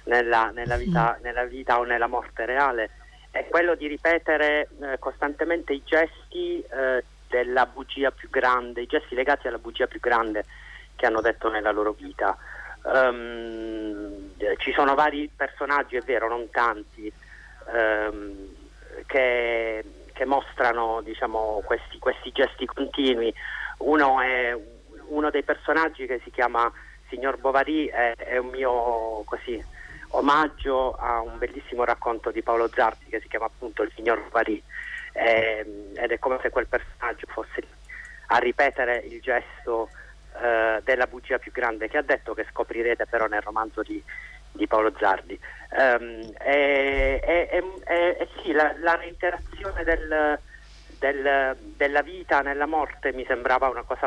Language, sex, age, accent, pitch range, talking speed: Italian, male, 40-59, native, 115-145 Hz, 140 wpm